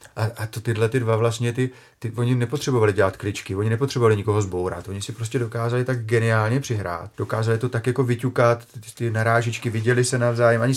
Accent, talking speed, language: native, 190 wpm, Czech